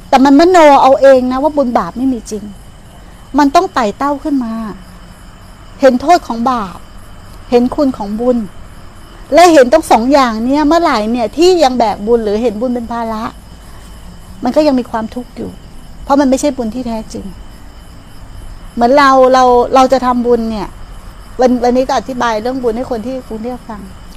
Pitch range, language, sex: 210-280 Hz, Thai, female